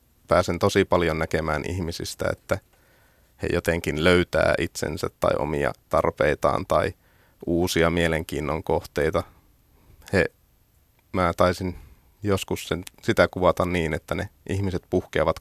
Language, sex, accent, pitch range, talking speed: Finnish, male, native, 80-95 Hz, 110 wpm